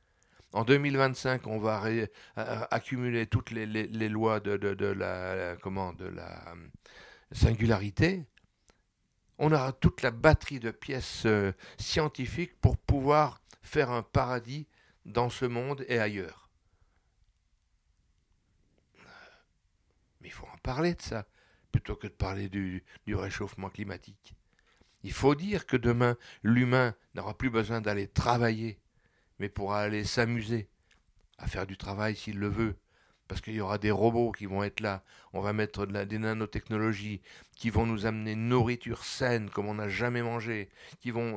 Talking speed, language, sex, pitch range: 145 wpm, French, male, 100-120 Hz